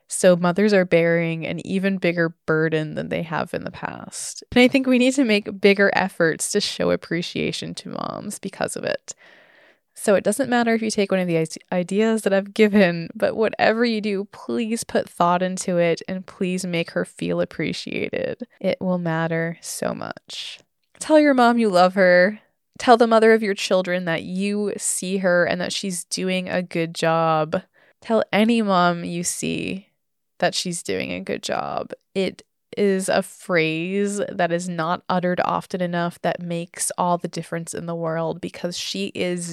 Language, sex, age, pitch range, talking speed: English, female, 20-39, 170-205 Hz, 180 wpm